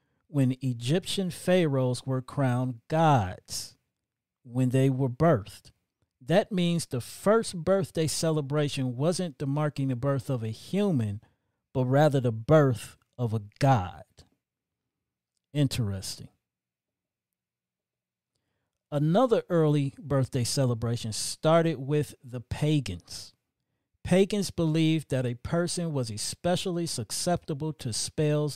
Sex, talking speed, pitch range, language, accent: male, 105 wpm, 120-155 Hz, English, American